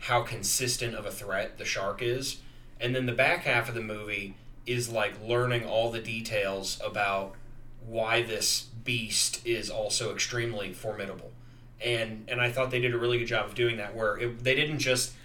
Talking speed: 190 wpm